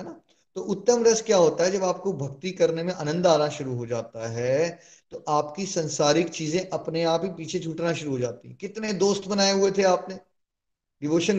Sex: male